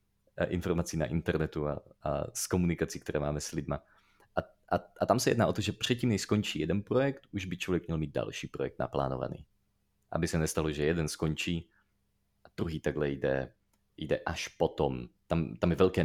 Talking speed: 185 wpm